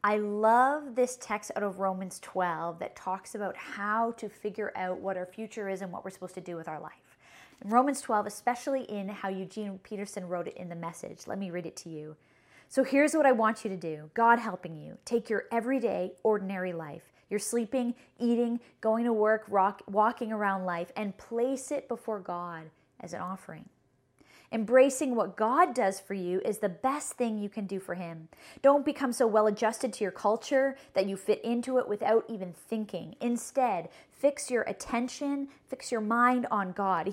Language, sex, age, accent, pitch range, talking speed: English, female, 20-39, American, 190-245 Hz, 190 wpm